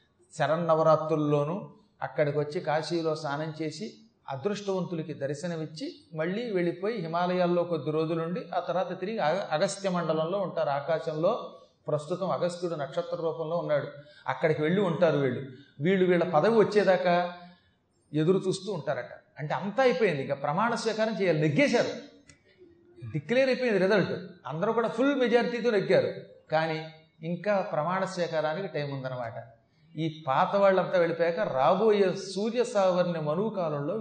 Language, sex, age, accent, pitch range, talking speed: Telugu, male, 30-49, native, 155-205 Hz, 120 wpm